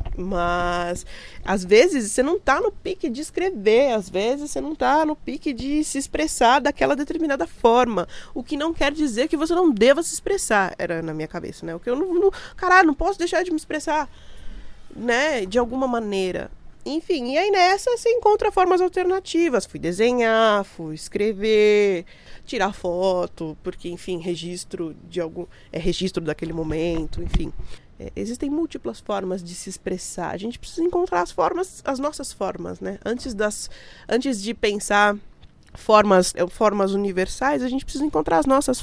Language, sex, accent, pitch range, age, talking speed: Portuguese, female, Brazilian, 185-295 Hz, 20-39, 165 wpm